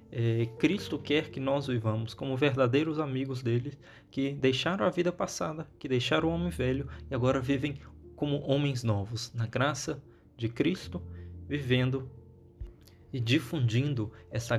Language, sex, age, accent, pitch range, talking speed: Portuguese, male, 20-39, Brazilian, 115-135 Hz, 140 wpm